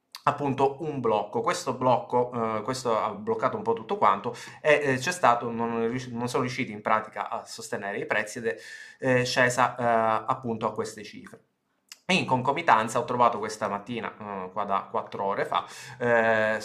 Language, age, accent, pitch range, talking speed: Italian, 20-39, native, 110-130 Hz, 180 wpm